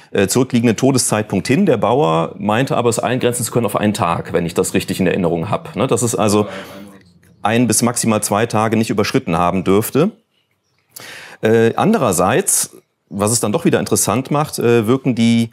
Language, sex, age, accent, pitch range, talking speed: German, male, 40-59, German, 105-130 Hz, 180 wpm